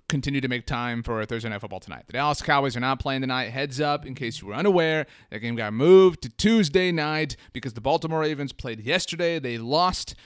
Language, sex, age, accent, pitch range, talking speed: English, male, 30-49, American, 115-150 Hz, 220 wpm